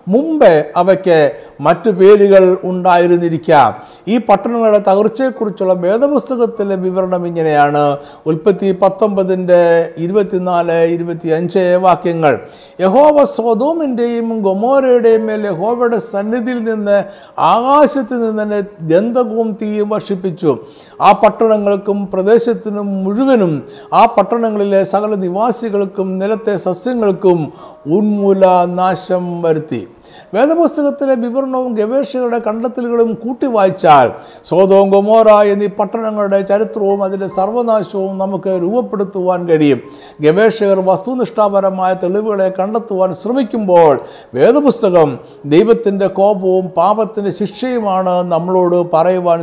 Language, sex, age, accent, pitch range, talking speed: Malayalam, male, 50-69, native, 175-220 Hz, 85 wpm